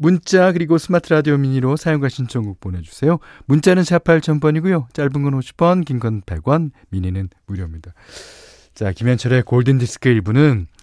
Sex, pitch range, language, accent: male, 100-150 Hz, Korean, native